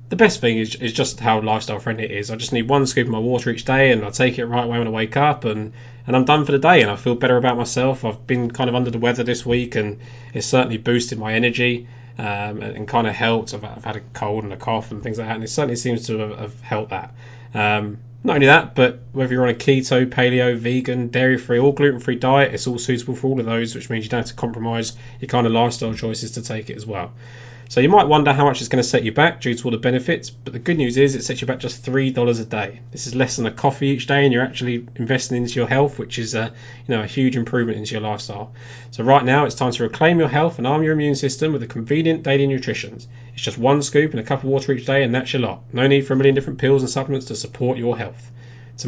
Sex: male